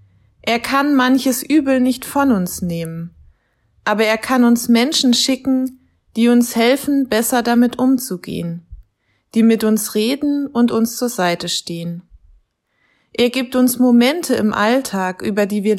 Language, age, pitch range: German, 20-39, 185-255 Hz